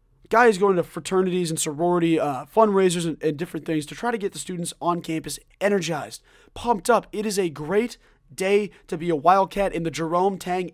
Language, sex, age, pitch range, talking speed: English, male, 20-39, 140-185 Hz, 205 wpm